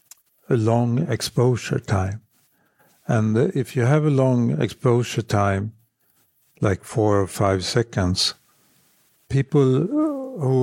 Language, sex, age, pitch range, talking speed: Slovak, male, 60-79, 110-135 Hz, 105 wpm